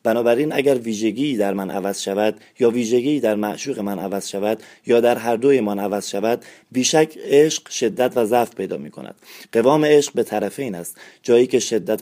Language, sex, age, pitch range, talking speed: Persian, male, 30-49, 105-130 Hz, 190 wpm